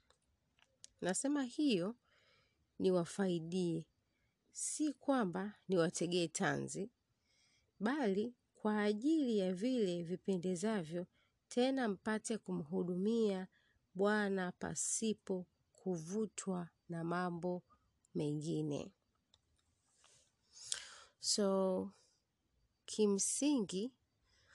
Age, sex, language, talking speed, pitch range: 30-49, female, Swahili, 60 wpm, 170-220 Hz